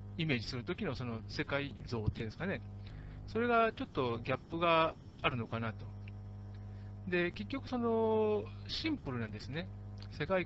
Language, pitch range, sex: Japanese, 100-160 Hz, male